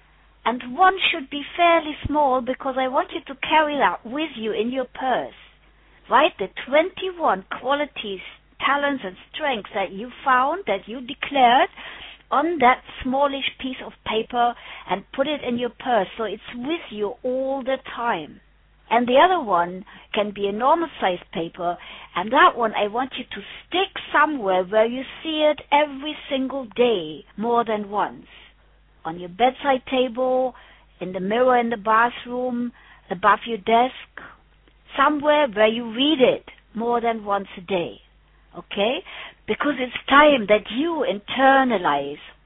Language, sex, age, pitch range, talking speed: English, female, 60-79, 210-280 Hz, 155 wpm